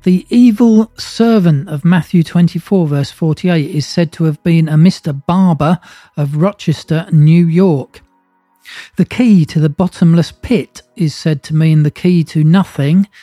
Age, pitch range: 40-59, 150-180 Hz